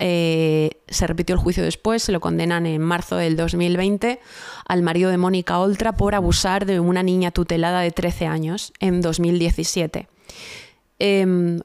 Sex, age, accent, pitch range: female, 20-39, Spanish, 170-200 Hz